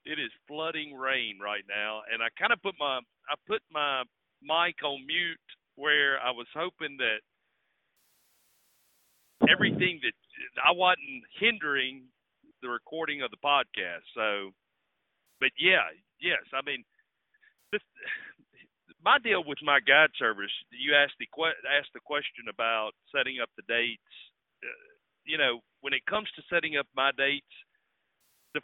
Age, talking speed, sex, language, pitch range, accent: 50-69, 145 wpm, male, English, 120-170 Hz, American